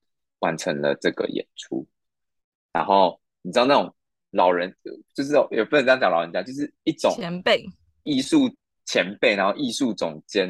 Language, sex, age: Chinese, male, 20-39